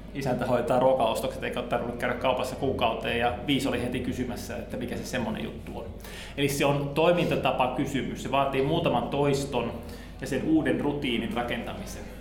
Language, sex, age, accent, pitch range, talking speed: Finnish, male, 20-39, native, 120-140 Hz, 155 wpm